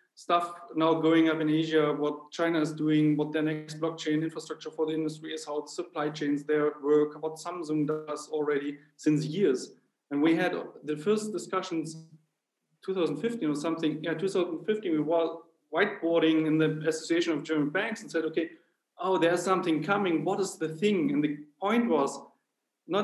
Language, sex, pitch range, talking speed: English, male, 155-185 Hz, 170 wpm